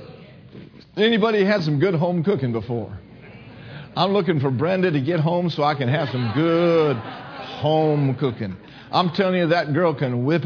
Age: 50-69